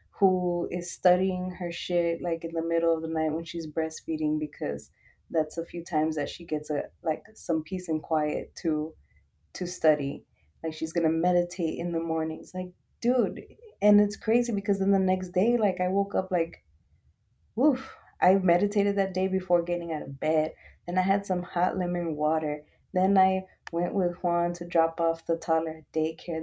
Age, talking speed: 20-39, 190 wpm